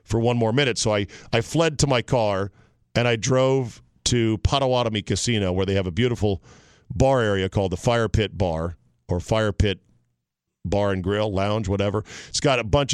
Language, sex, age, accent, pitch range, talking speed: English, male, 50-69, American, 100-125 Hz, 190 wpm